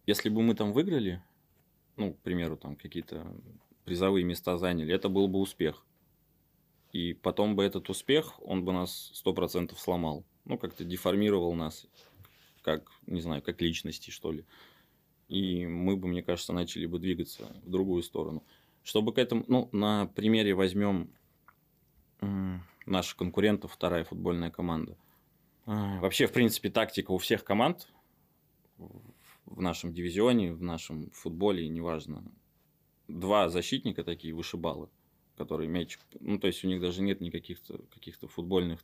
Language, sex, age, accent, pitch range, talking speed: Russian, male, 20-39, native, 85-100 Hz, 140 wpm